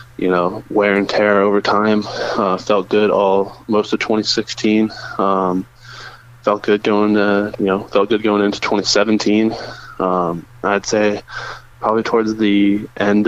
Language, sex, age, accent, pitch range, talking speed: English, male, 20-39, American, 95-110 Hz, 150 wpm